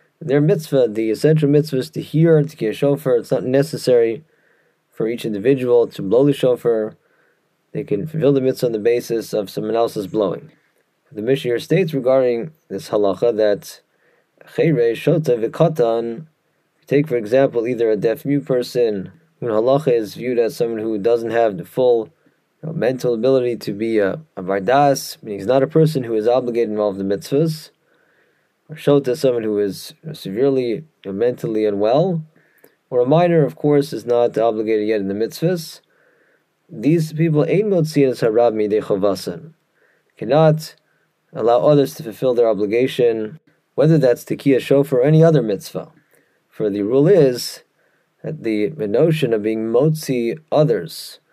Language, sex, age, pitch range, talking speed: English, male, 20-39, 115-155 Hz, 155 wpm